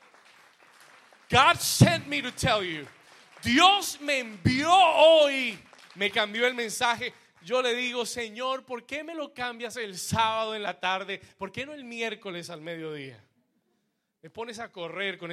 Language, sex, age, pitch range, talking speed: Spanish, male, 30-49, 200-275 Hz, 155 wpm